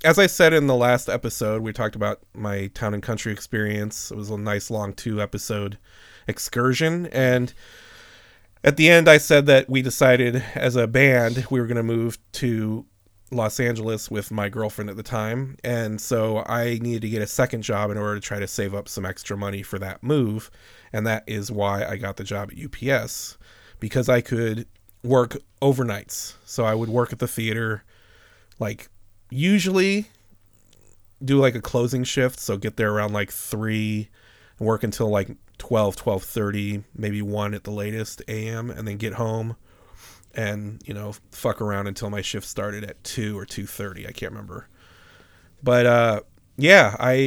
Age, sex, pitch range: 30-49, male, 105-125 Hz